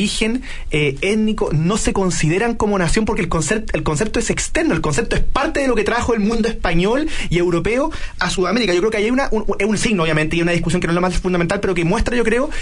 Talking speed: 240 wpm